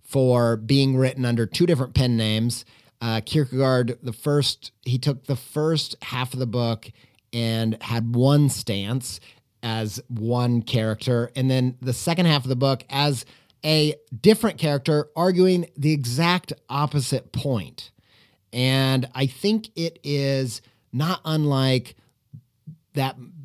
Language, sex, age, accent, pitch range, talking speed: English, male, 30-49, American, 120-150 Hz, 135 wpm